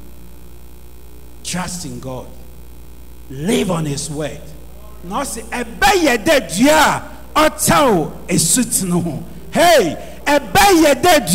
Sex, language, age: male, English, 50-69